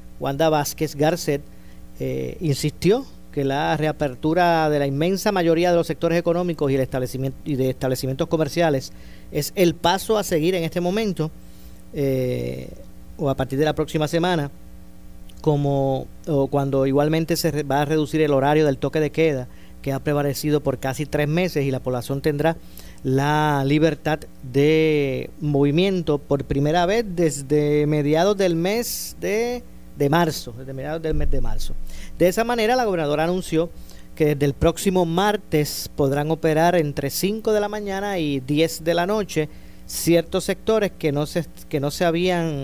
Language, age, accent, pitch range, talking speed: Spanish, 40-59, American, 140-175 Hz, 160 wpm